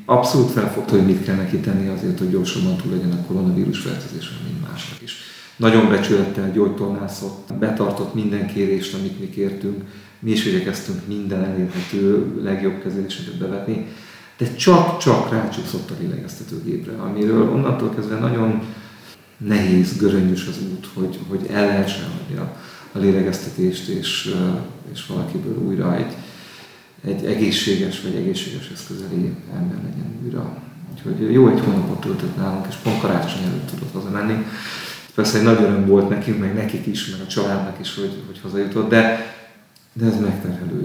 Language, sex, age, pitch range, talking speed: Hungarian, male, 40-59, 100-160 Hz, 140 wpm